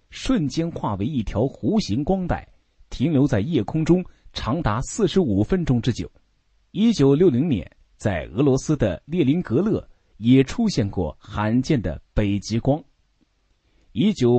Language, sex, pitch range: Chinese, male, 105-175 Hz